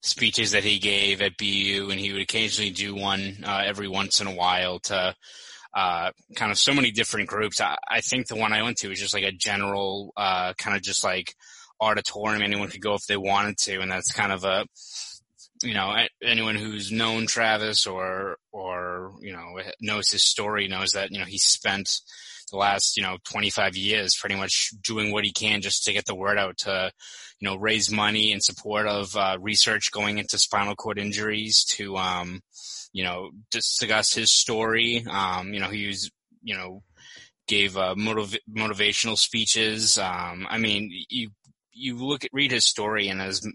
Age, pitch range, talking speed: 20-39, 95-110 Hz, 195 wpm